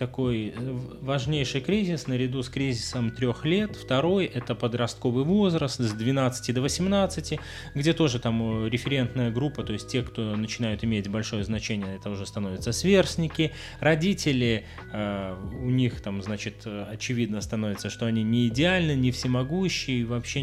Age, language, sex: 20-39, Russian, male